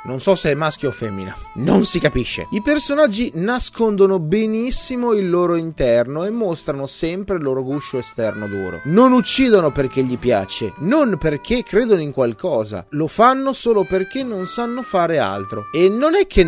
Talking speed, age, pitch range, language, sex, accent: 170 wpm, 30-49, 125-200 Hz, Italian, male, native